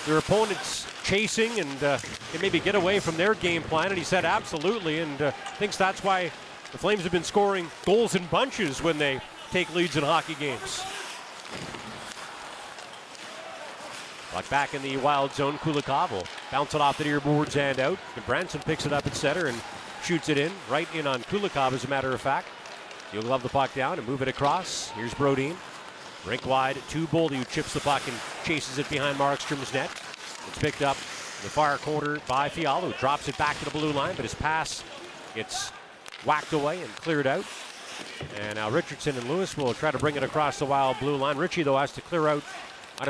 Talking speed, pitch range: 200 wpm, 135-165 Hz